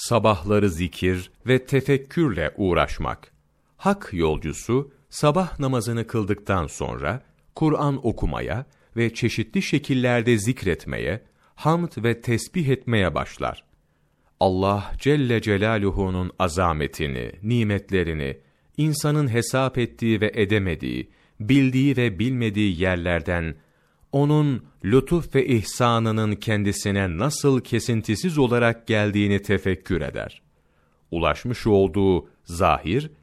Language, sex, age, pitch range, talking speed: Turkish, male, 40-59, 90-130 Hz, 90 wpm